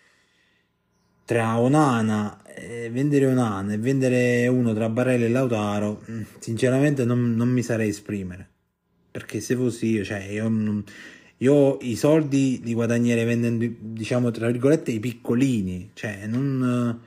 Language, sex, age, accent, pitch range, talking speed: Italian, male, 30-49, native, 105-130 Hz, 135 wpm